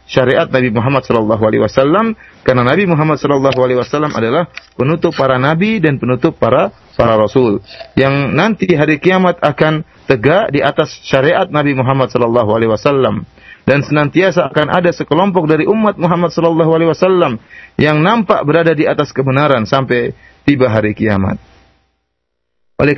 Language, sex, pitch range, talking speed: Malay, male, 125-175 Hz, 130 wpm